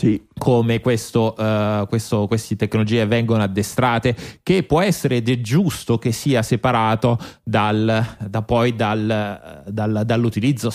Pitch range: 110-130 Hz